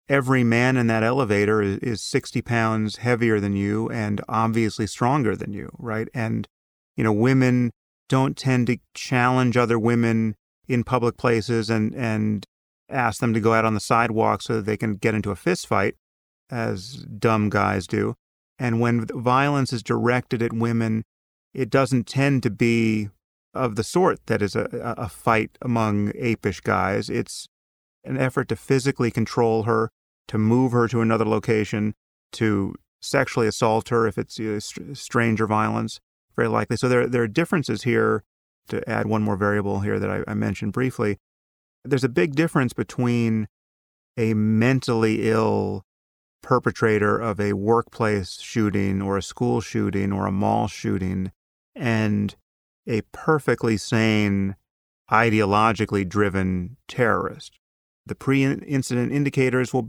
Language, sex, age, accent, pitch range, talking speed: English, male, 30-49, American, 105-120 Hz, 150 wpm